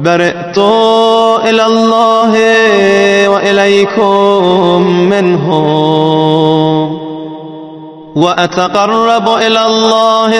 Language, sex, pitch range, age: Arabic, male, 170-225 Hz, 30-49